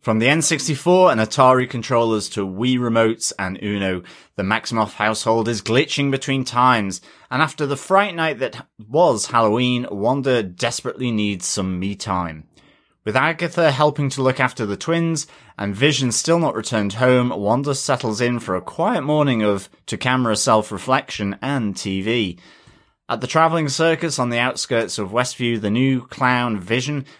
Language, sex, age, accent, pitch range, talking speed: English, male, 30-49, British, 110-150 Hz, 155 wpm